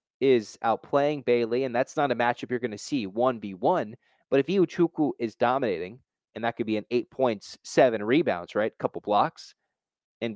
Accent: American